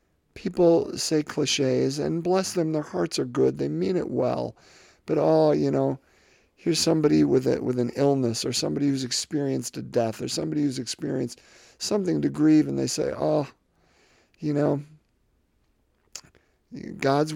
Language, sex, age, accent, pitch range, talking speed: English, male, 50-69, American, 115-155 Hz, 155 wpm